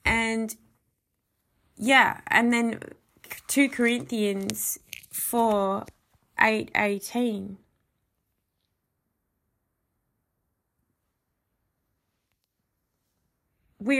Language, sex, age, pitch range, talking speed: English, female, 20-39, 210-250 Hz, 45 wpm